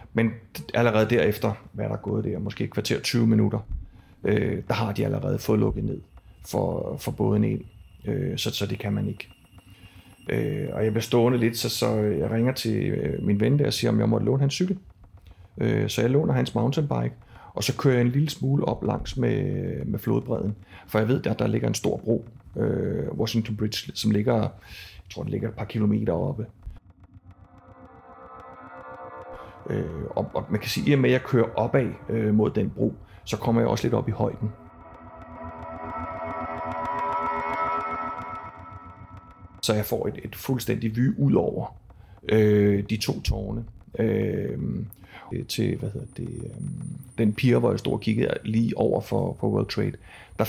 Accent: native